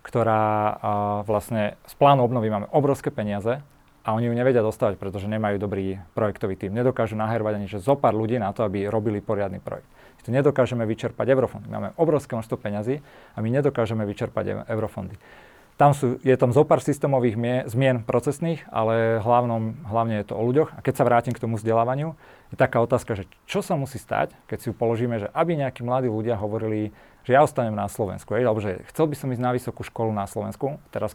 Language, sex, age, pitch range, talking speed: Slovak, male, 30-49, 105-125 Hz, 195 wpm